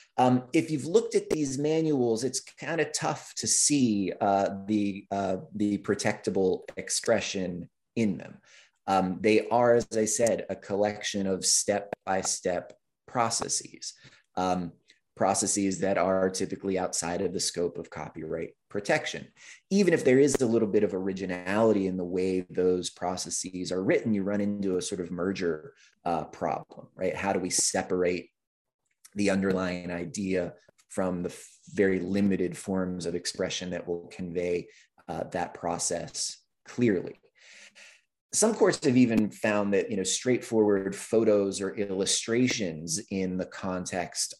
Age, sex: 30-49, male